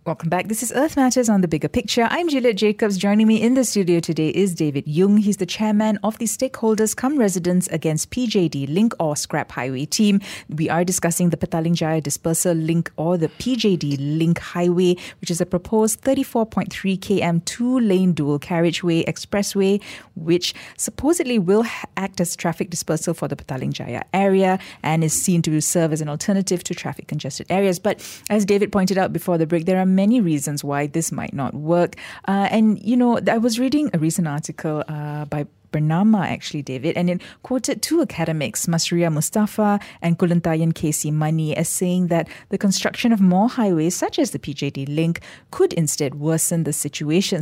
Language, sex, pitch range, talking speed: English, female, 160-205 Hz, 180 wpm